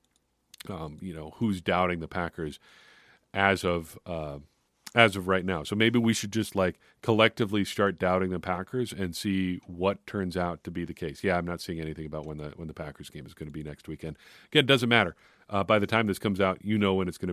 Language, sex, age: English, male, 40-59